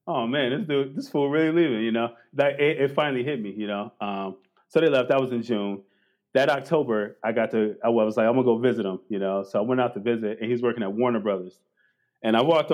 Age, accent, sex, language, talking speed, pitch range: 30-49, American, male, English, 265 wpm, 105-135 Hz